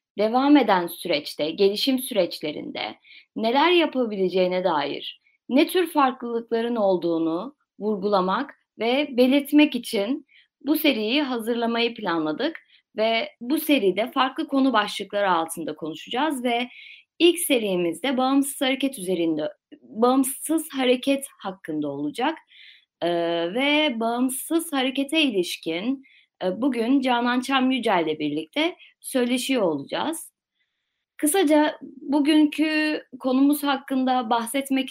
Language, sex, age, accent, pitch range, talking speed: Turkish, female, 30-49, native, 185-275 Hz, 95 wpm